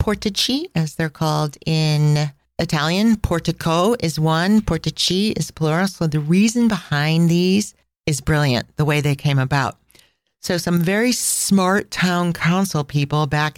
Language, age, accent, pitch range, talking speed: English, 40-59, American, 150-185 Hz, 140 wpm